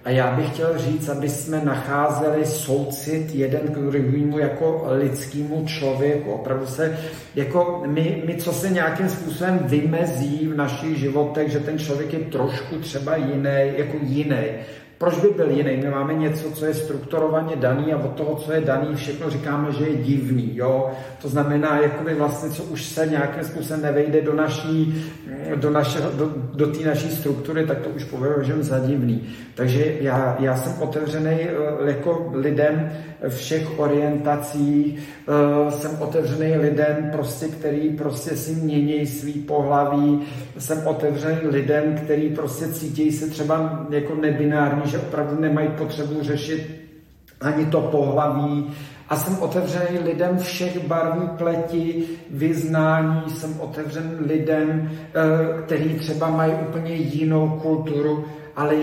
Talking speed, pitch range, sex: 140 wpm, 145-155 Hz, male